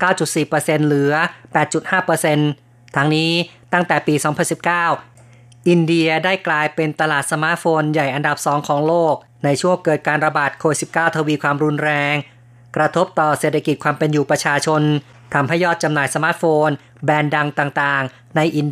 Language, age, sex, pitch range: Thai, 20-39, female, 145-170 Hz